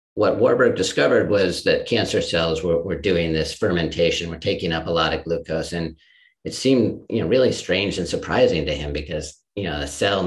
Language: English